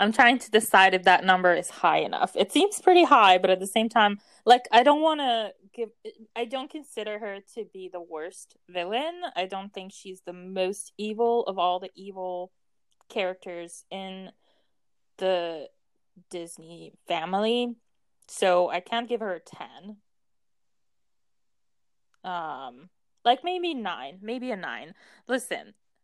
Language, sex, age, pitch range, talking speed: English, female, 20-39, 180-235 Hz, 150 wpm